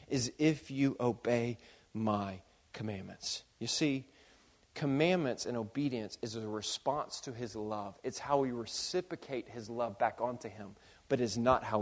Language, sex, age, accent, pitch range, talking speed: English, male, 30-49, American, 115-170 Hz, 150 wpm